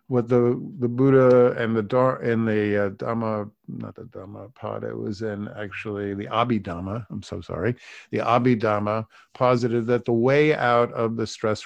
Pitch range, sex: 105-130 Hz, male